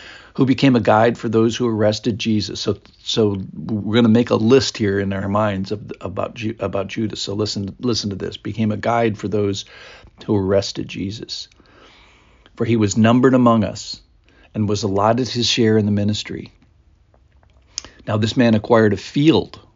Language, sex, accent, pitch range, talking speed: English, male, American, 100-120 Hz, 175 wpm